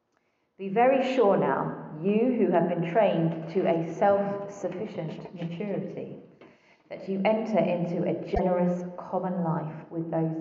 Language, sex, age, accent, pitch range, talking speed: English, female, 30-49, British, 165-225 Hz, 135 wpm